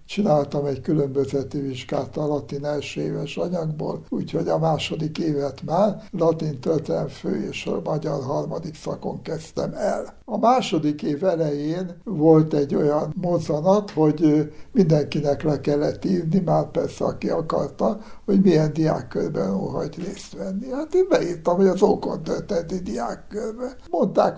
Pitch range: 155-195 Hz